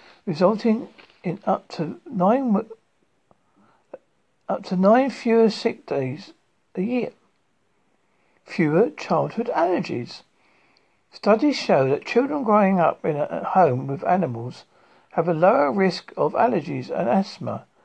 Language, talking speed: English, 115 wpm